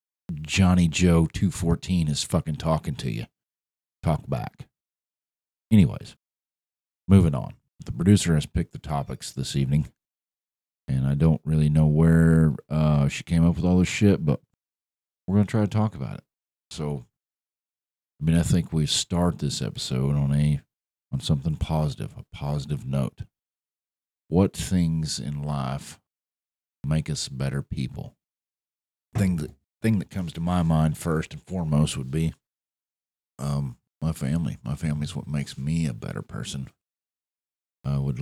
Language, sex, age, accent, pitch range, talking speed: English, male, 50-69, American, 70-80 Hz, 150 wpm